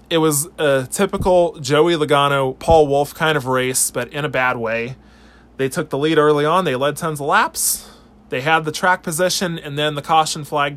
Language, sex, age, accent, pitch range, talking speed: English, male, 20-39, American, 140-180 Hz, 205 wpm